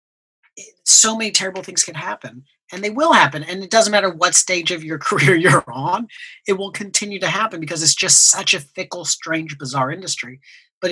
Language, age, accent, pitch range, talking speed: English, 40-59, American, 145-185 Hz, 200 wpm